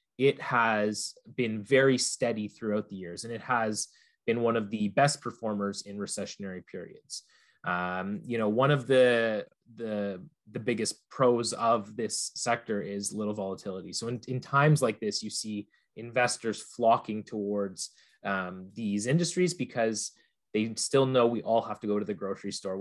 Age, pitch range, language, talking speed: 20-39, 105-130 Hz, English, 165 wpm